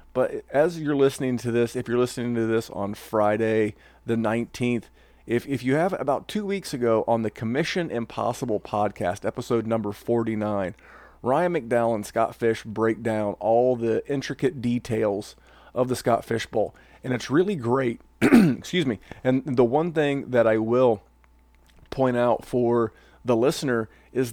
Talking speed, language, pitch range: 165 wpm, English, 115-140 Hz